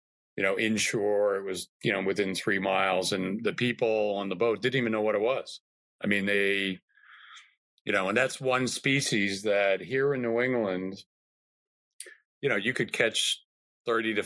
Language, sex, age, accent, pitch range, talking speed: English, male, 40-59, American, 100-130 Hz, 180 wpm